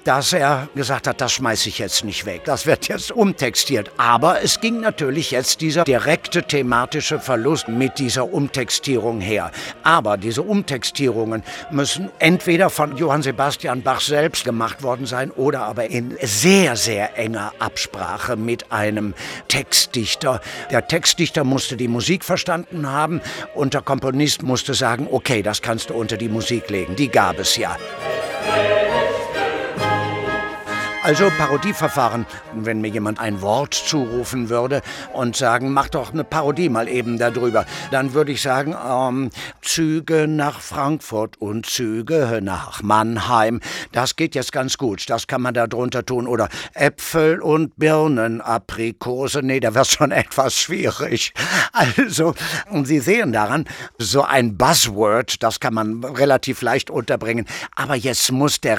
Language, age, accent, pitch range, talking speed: German, 60-79, German, 115-150 Hz, 145 wpm